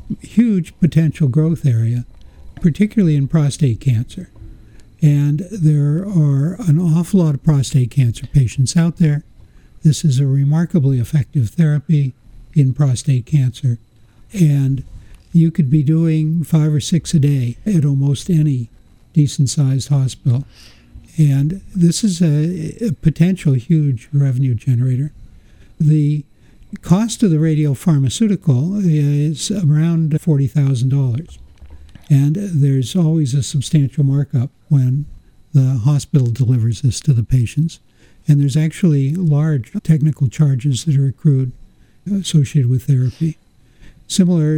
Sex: male